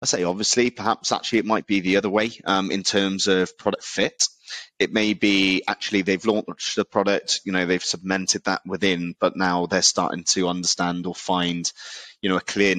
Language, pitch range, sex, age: English, 90-100 Hz, male, 30-49